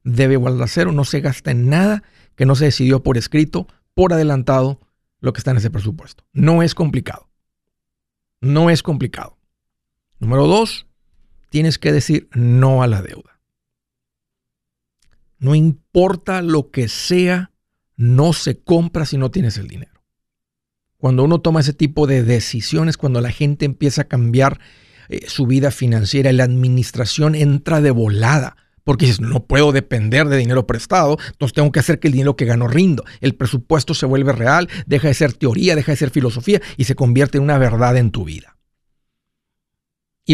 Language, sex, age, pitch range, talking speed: Spanish, male, 50-69, 125-160 Hz, 170 wpm